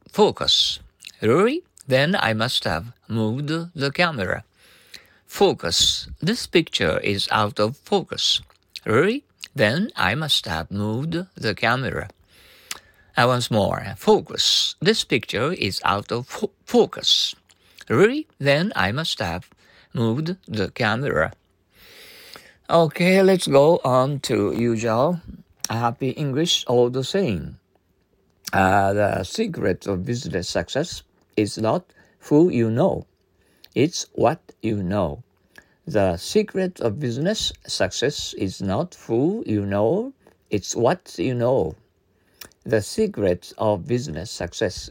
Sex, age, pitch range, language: male, 50-69, 105-165 Hz, Japanese